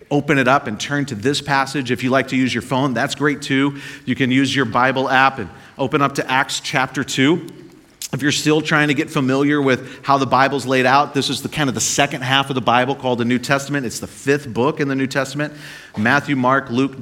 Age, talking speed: 40-59, 245 wpm